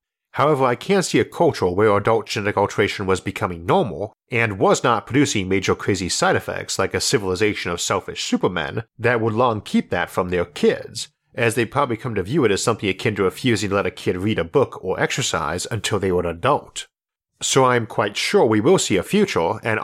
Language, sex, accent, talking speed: English, male, American, 215 wpm